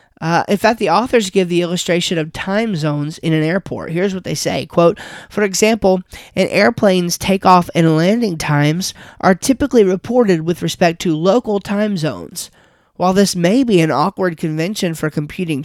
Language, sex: English, male